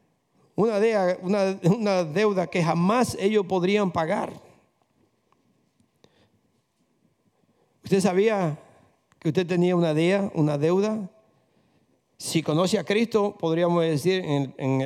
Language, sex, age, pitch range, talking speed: Spanish, male, 50-69, 165-205 Hz, 90 wpm